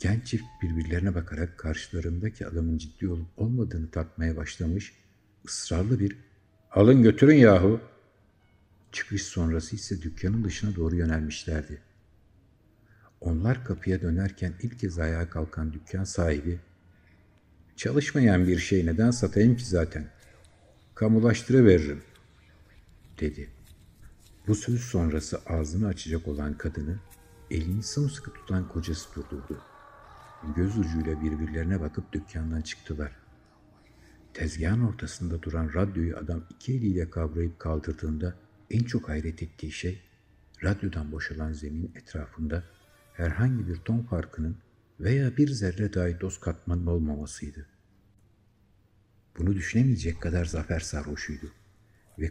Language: Turkish